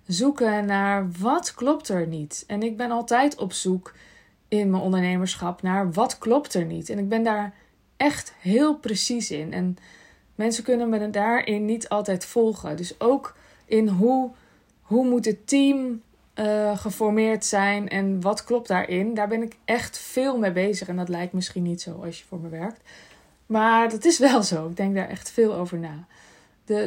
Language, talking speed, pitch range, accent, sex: Dutch, 185 wpm, 185-235 Hz, Dutch, female